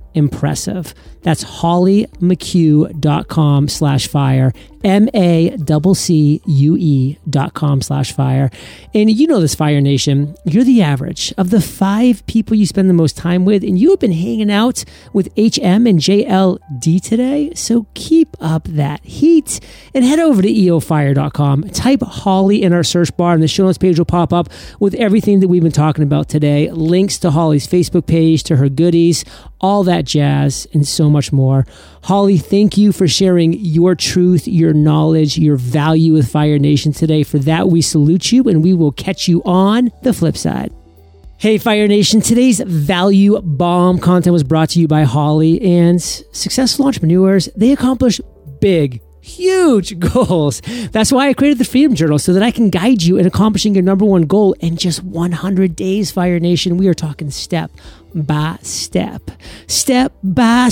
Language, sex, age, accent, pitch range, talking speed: English, male, 40-59, American, 150-205 Hz, 170 wpm